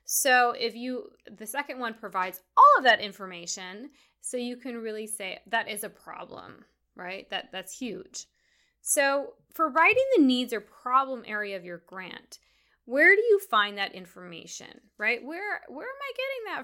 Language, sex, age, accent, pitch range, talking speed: English, female, 20-39, American, 210-280 Hz, 175 wpm